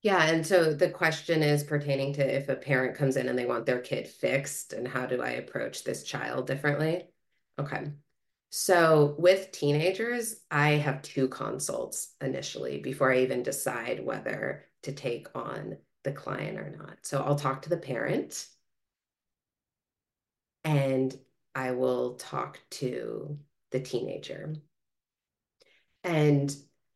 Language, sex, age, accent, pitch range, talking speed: English, female, 30-49, American, 130-160 Hz, 140 wpm